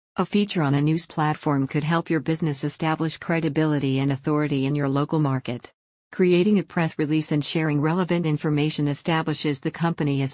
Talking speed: 175 wpm